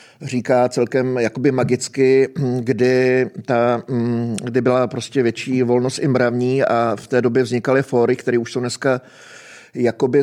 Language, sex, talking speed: Czech, male, 135 wpm